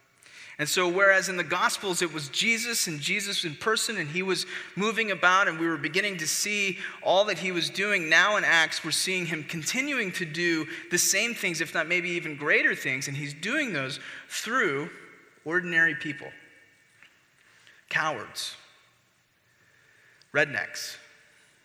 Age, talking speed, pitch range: 20-39, 155 wpm, 150-195 Hz